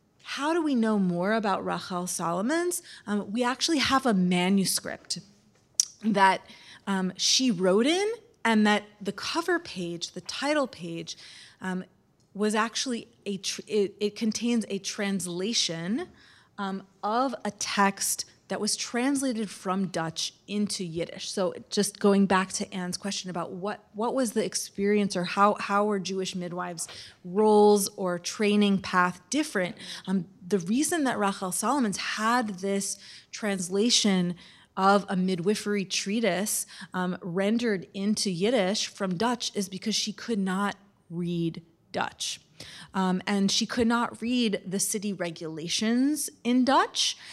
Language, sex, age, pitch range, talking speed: English, female, 30-49, 185-230 Hz, 140 wpm